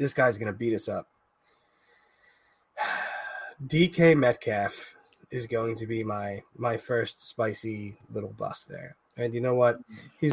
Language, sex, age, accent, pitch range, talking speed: English, male, 20-39, American, 115-150 Hz, 140 wpm